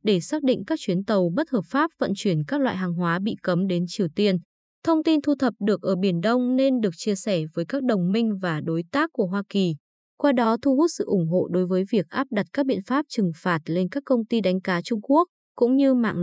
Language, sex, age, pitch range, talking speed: Vietnamese, female, 20-39, 185-250 Hz, 260 wpm